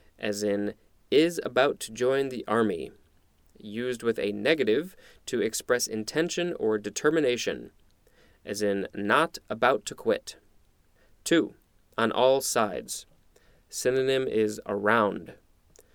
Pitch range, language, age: 105-145 Hz, English, 20-39